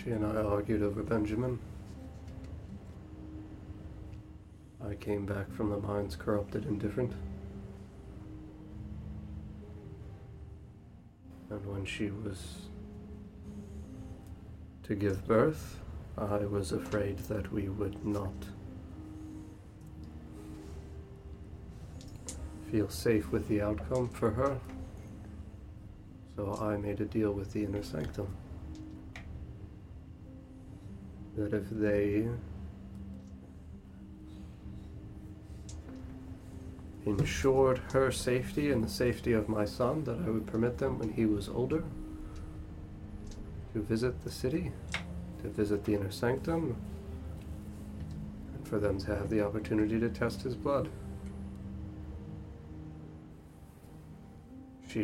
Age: 40-59